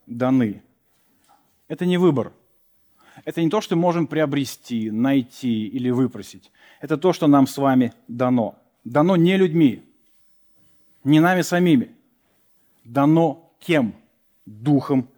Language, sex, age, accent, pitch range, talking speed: Russian, male, 40-59, native, 135-180 Hz, 120 wpm